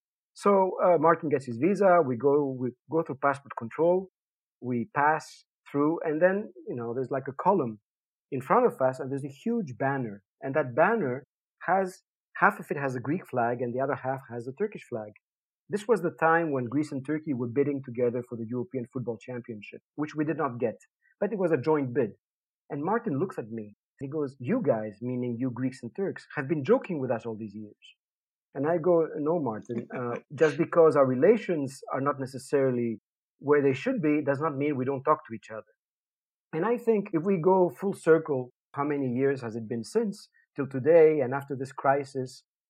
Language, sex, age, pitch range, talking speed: English, male, 50-69, 125-160 Hz, 210 wpm